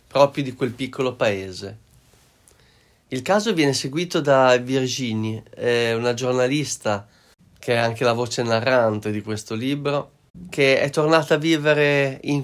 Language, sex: Italian, male